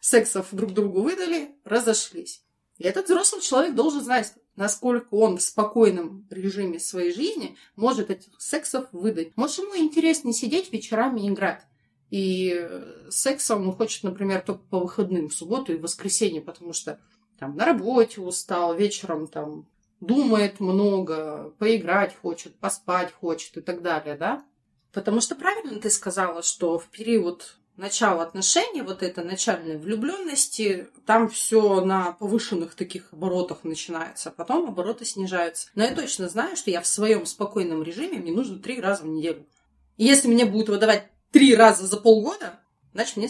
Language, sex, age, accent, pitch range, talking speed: Russian, female, 30-49, native, 180-235 Hz, 155 wpm